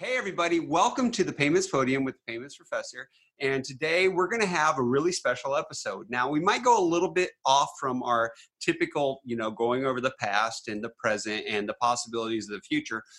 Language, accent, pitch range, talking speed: English, American, 130-185 Hz, 210 wpm